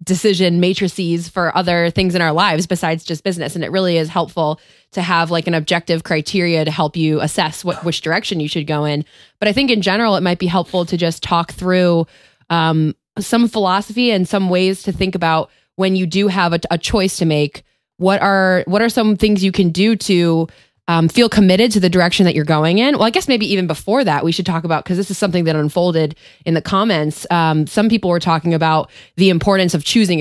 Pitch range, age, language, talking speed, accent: 160-190 Hz, 20-39, English, 225 wpm, American